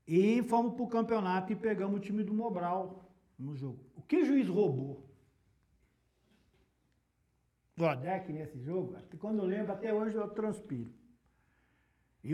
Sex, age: male, 60-79